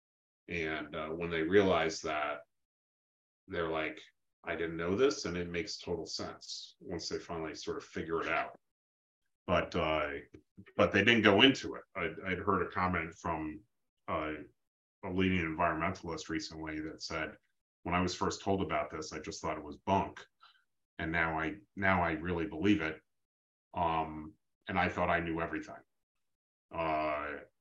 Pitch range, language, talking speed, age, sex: 80-95 Hz, English, 165 wpm, 30-49, male